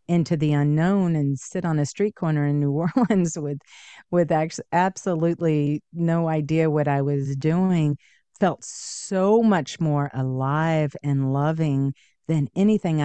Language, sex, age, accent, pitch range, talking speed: English, female, 40-59, American, 145-180 Hz, 145 wpm